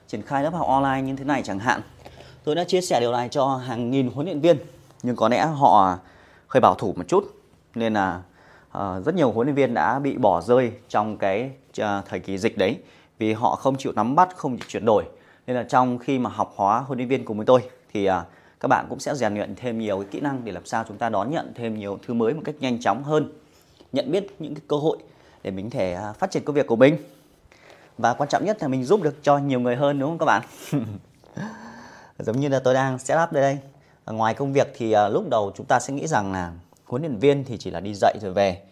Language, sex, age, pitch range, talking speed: Vietnamese, male, 20-39, 110-145 Hz, 250 wpm